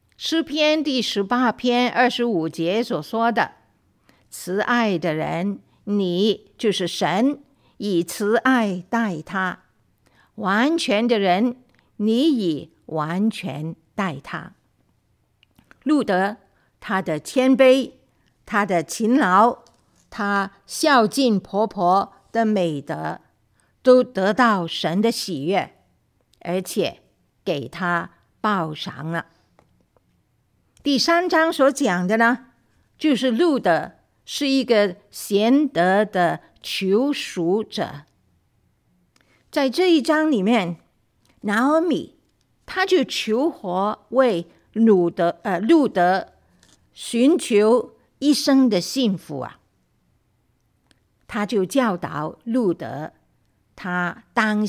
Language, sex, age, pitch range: Chinese, female, 50-69, 175-255 Hz